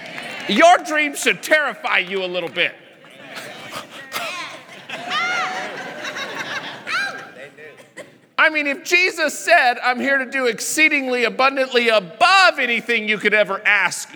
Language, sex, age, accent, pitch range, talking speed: English, male, 40-59, American, 215-300 Hz, 105 wpm